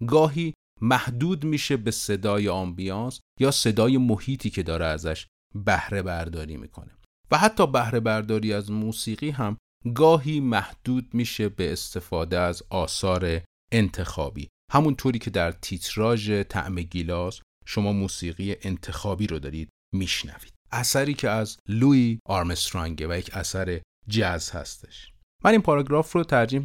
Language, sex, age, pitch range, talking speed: Persian, male, 40-59, 90-120 Hz, 130 wpm